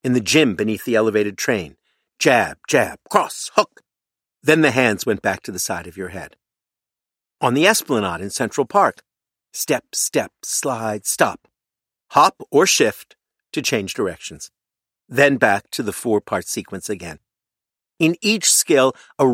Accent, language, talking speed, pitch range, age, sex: American, English, 150 wpm, 105-155 Hz, 50-69, male